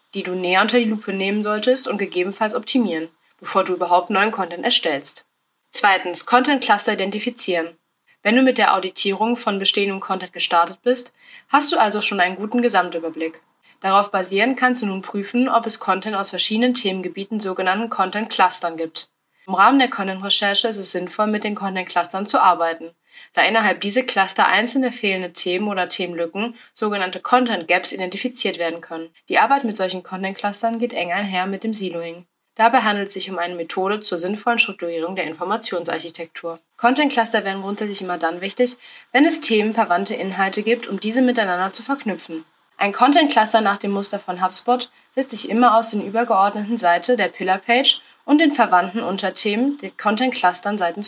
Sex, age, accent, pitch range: female, 20-39, German, 180-230 Hz